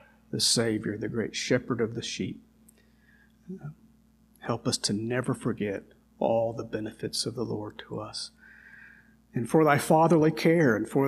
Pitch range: 115-150 Hz